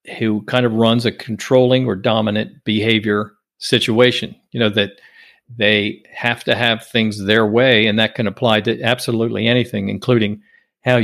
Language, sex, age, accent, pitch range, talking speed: English, male, 50-69, American, 105-125 Hz, 160 wpm